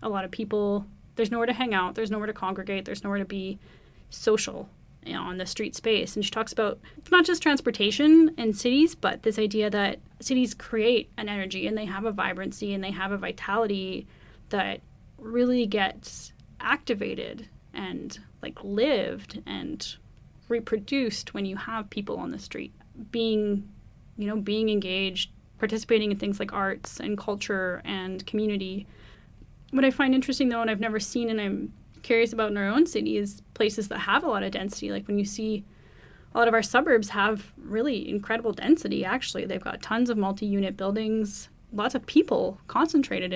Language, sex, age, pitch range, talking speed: English, female, 10-29, 195-230 Hz, 180 wpm